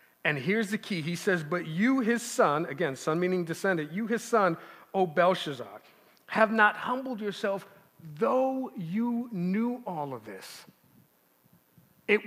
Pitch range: 165-215 Hz